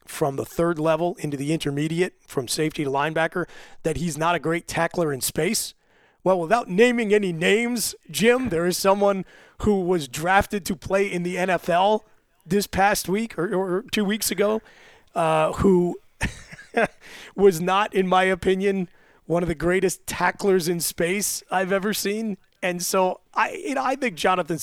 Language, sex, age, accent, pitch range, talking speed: English, male, 30-49, American, 150-190 Hz, 165 wpm